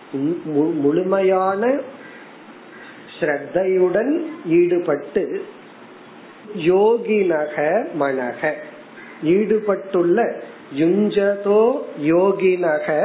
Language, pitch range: Tamil, 145-190 Hz